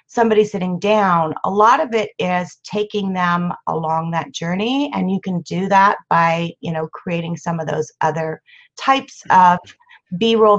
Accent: American